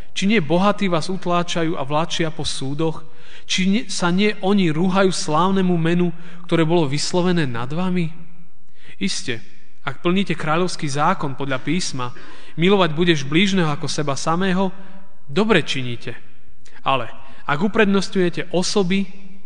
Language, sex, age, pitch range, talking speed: Slovak, male, 30-49, 145-185 Hz, 125 wpm